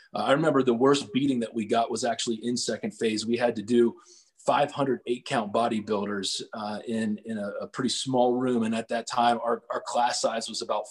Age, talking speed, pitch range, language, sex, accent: 30-49, 220 wpm, 110-130 Hz, English, male, American